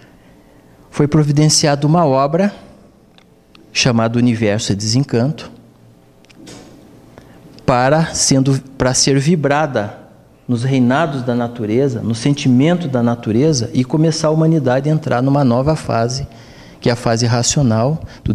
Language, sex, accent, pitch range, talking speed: Portuguese, male, Brazilian, 120-150 Hz, 115 wpm